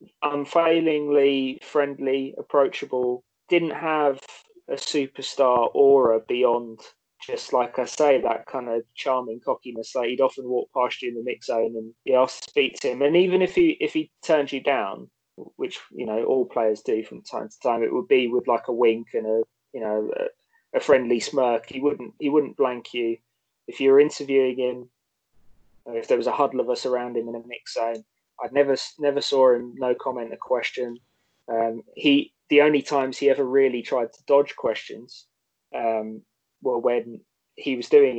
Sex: male